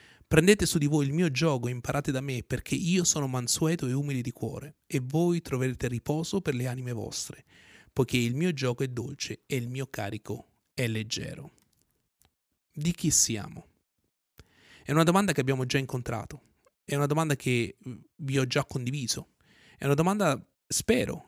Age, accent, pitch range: 30-49, native, 125-160 Hz